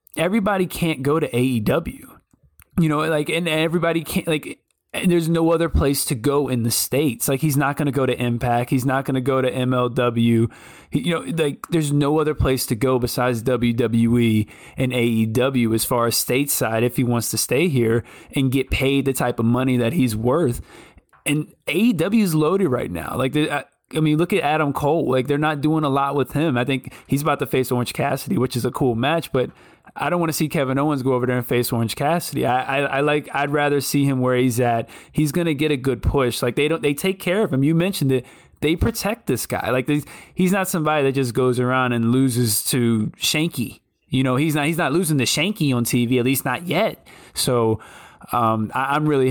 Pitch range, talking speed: 120-150 Hz, 225 wpm